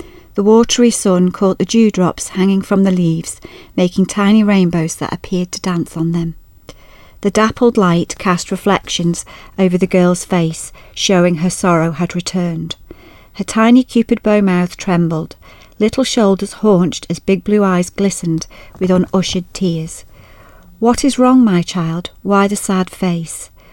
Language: English